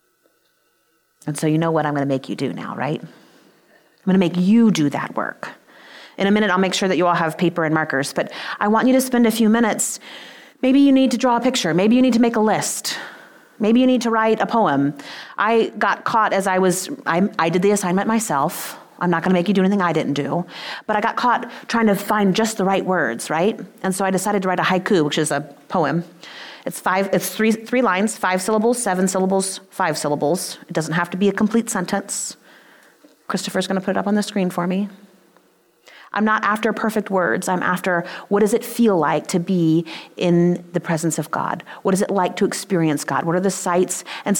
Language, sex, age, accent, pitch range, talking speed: English, female, 30-49, American, 170-220 Hz, 230 wpm